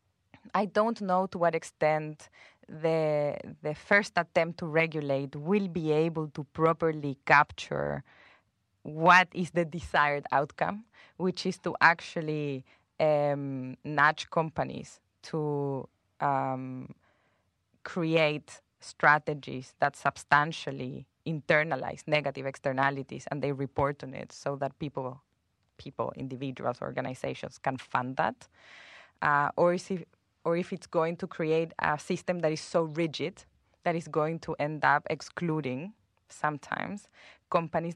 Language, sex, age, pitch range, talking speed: English, female, 20-39, 140-170 Hz, 125 wpm